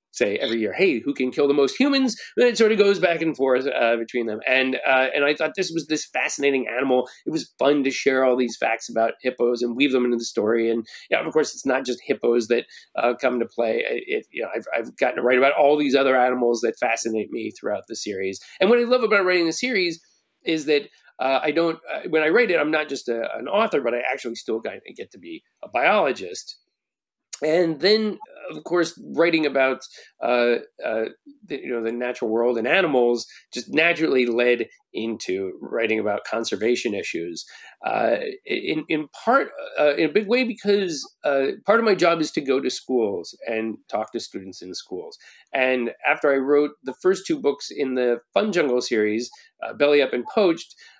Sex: male